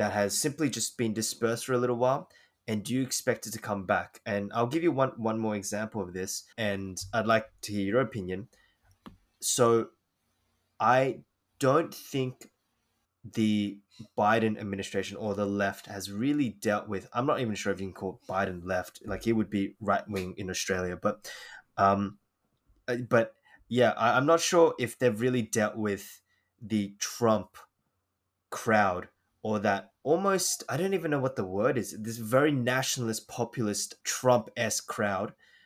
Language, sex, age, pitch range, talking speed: English, male, 20-39, 100-120 Hz, 170 wpm